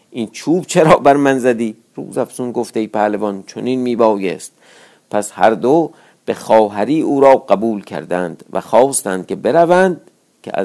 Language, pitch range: Persian, 110-135 Hz